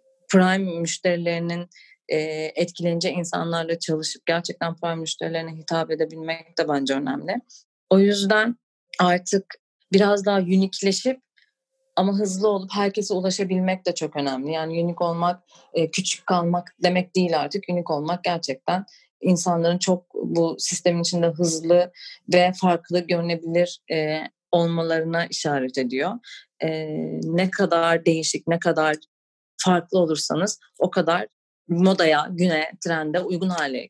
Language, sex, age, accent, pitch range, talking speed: Turkish, female, 30-49, native, 165-195 Hz, 115 wpm